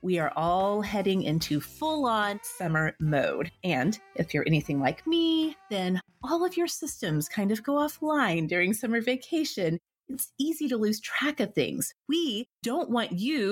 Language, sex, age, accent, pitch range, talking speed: English, female, 30-49, American, 165-255 Hz, 165 wpm